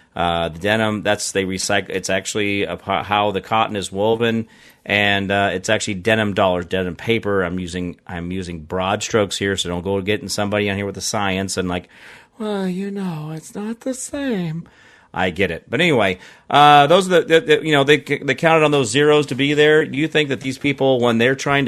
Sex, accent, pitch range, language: male, American, 100-140 Hz, English